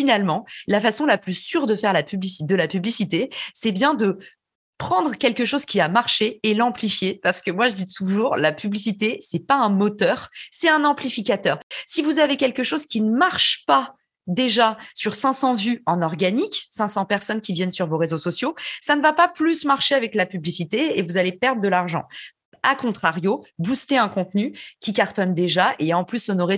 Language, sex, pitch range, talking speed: French, female, 185-235 Hz, 200 wpm